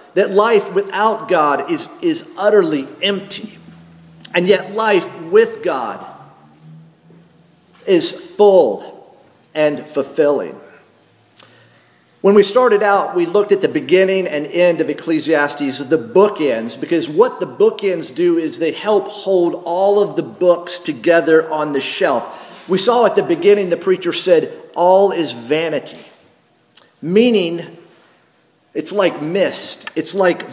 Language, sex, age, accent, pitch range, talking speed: English, male, 50-69, American, 160-225 Hz, 130 wpm